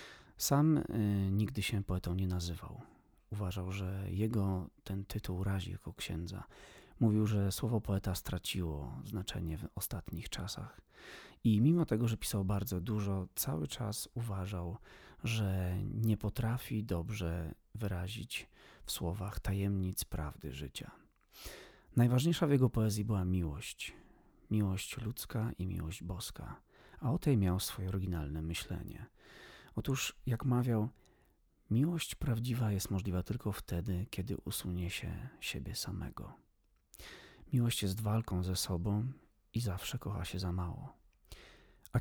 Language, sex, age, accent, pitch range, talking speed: Polish, male, 30-49, native, 90-110 Hz, 125 wpm